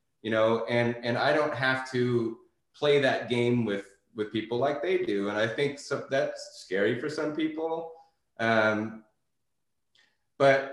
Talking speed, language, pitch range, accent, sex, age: 155 wpm, English, 110-145 Hz, American, male, 30-49